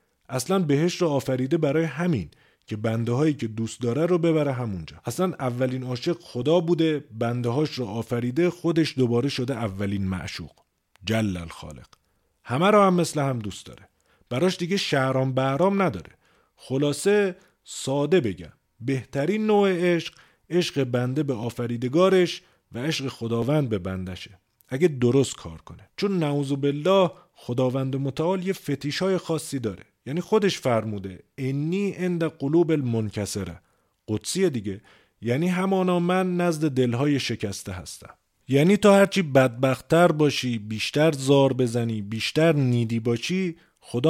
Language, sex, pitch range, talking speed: Persian, male, 115-170 Hz, 135 wpm